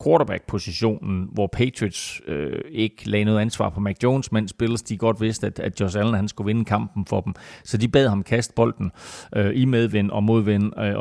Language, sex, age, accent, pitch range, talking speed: Danish, male, 30-49, native, 100-115 Hz, 205 wpm